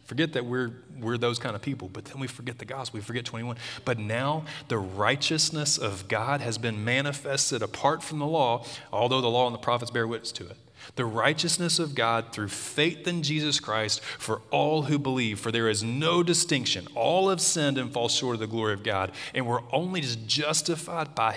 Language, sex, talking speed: English, male, 210 wpm